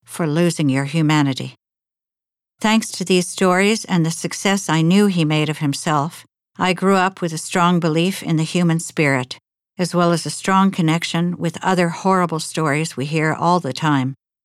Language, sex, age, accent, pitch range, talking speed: English, female, 60-79, American, 150-180 Hz, 180 wpm